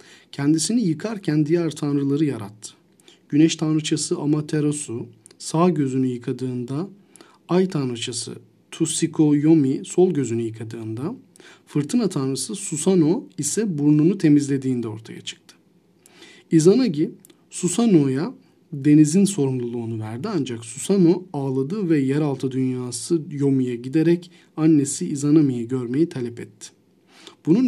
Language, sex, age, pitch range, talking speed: Turkish, male, 40-59, 135-170 Hz, 100 wpm